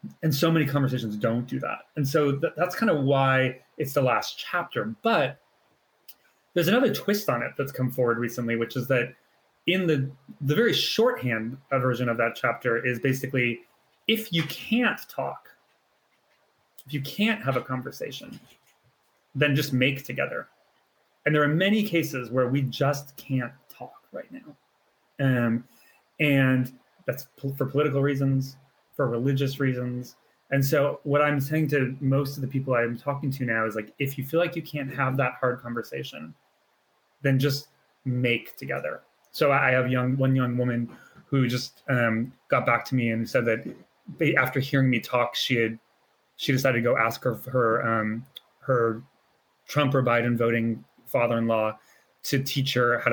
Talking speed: 170 wpm